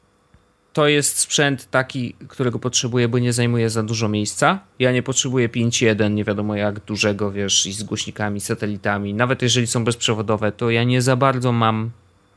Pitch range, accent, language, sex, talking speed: 110-130 Hz, native, Polish, male, 170 wpm